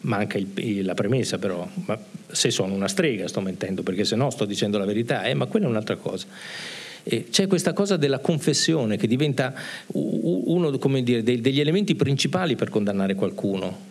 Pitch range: 110-150 Hz